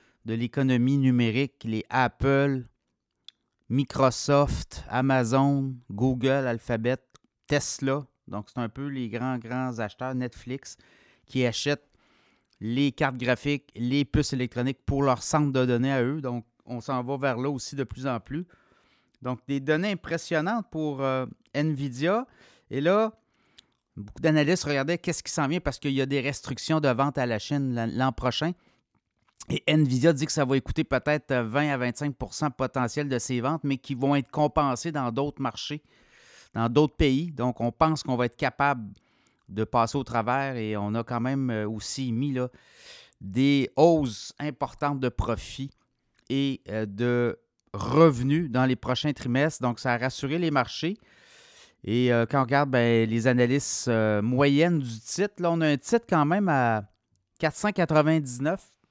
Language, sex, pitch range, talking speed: French, male, 120-145 Hz, 160 wpm